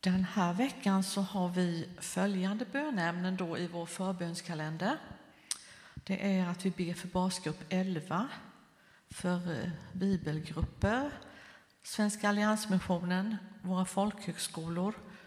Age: 50-69